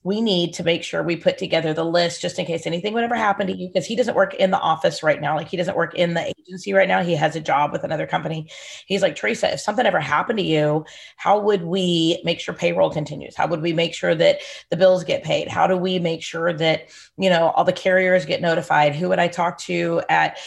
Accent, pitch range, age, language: American, 170-195 Hz, 30-49, English